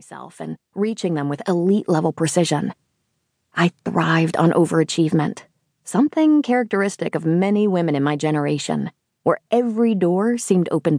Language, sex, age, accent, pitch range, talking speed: English, female, 30-49, American, 160-205 Hz, 130 wpm